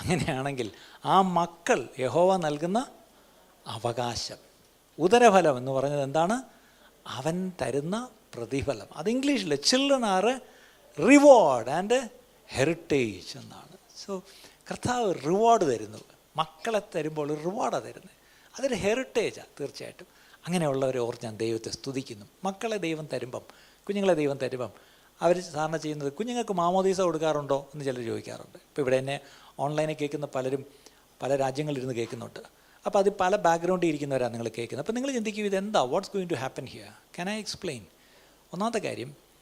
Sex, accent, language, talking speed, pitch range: male, native, Malayalam, 125 wpm, 135-195 Hz